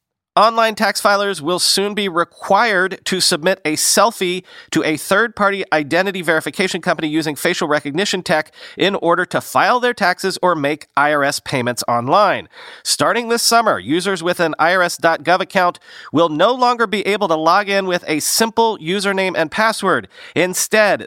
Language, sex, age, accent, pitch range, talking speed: English, male, 40-59, American, 155-195 Hz, 155 wpm